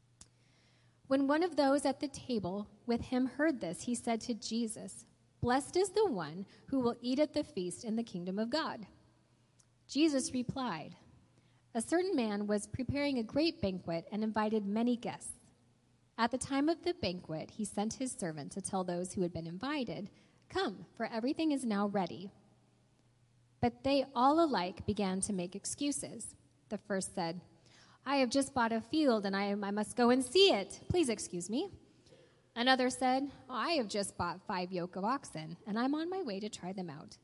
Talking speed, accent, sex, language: 185 wpm, American, female, English